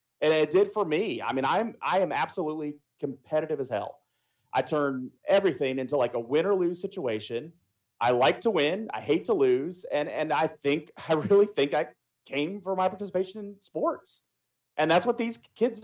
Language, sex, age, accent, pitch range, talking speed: English, male, 30-49, American, 145-195 Hz, 195 wpm